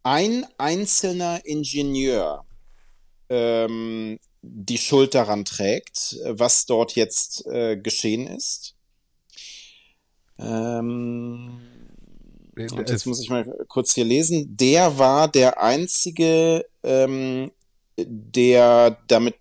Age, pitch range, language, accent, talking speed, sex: 30-49, 115-140 Hz, German, German, 95 wpm, male